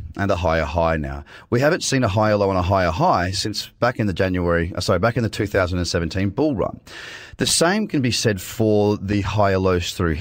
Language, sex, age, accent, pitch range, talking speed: English, male, 30-49, Australian, 95-120 Hz, 215 wpm